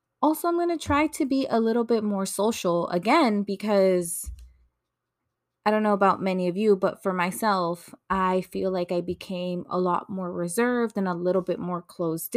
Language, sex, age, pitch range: English, female, 20-39, 165-215 Hz